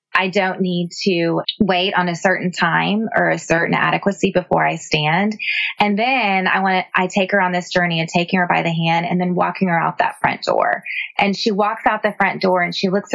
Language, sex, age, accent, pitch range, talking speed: English, female, 20-39, American, 175-200 Hz, 235 wpm